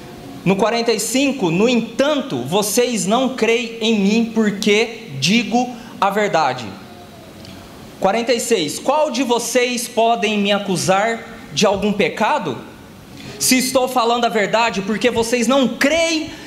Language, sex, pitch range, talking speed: Portuguese, male, 205-255 Hz, 115 wpm